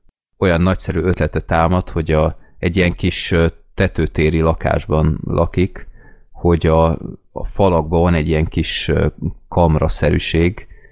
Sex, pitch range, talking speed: male, 80-95 Hz, 115 wpm